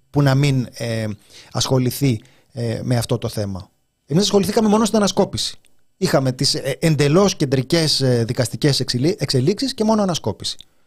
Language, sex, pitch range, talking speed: Greek, male, 125-190 Hz, 145 wpm